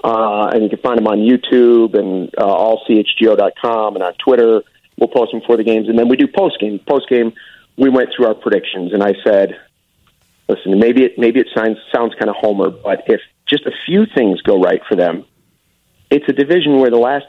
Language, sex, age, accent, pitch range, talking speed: English, male, 40-59, American, 110-140 Hz, 220 wpm